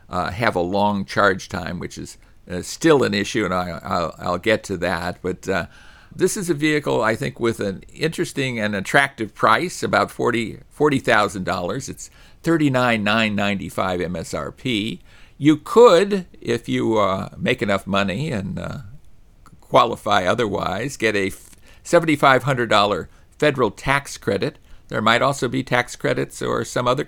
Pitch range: 95-140 Hz